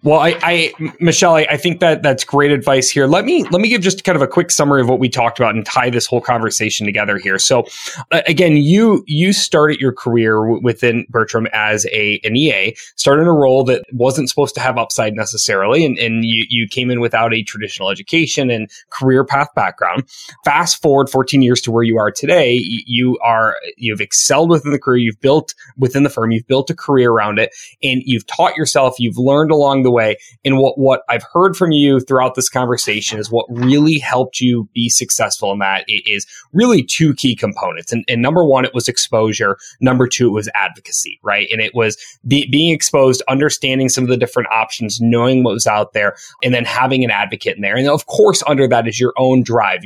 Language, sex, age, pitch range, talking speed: English, male, 20-39, 115-145 Hz, 220 wpm